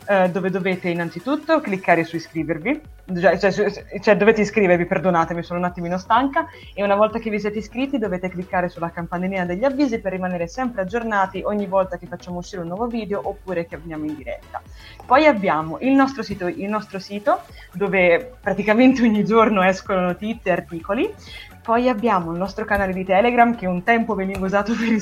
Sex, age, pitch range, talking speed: female, 20-39, 175-230 Hz, 180 wpm